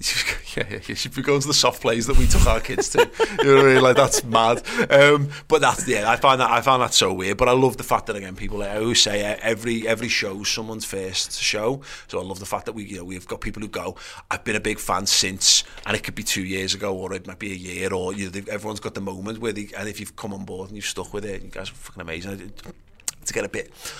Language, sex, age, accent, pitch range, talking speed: English, male, 30-49, British, 95-115 Hz, 305 wpm